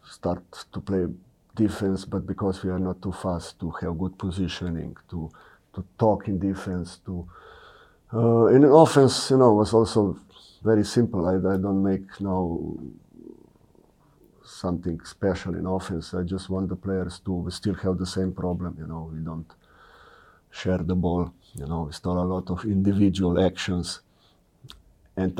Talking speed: 170 wpm